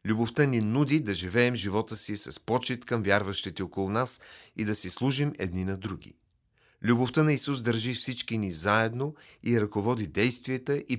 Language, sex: Bulgarian, male